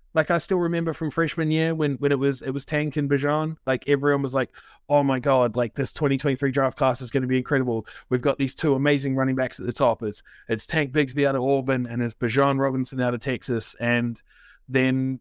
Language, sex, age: English, male, 30-49